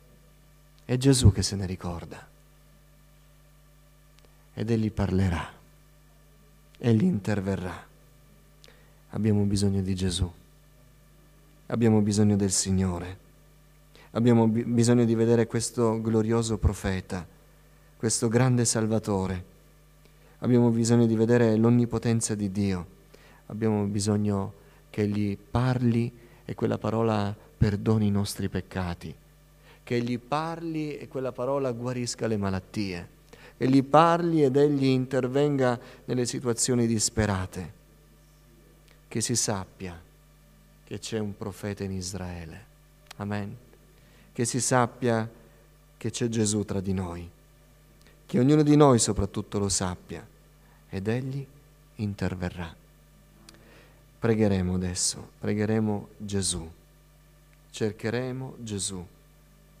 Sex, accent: male, native